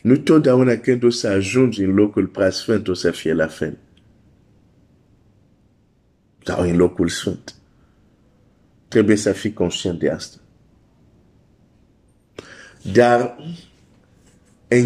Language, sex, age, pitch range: Romanian, male, 50-69, 95-125 Hz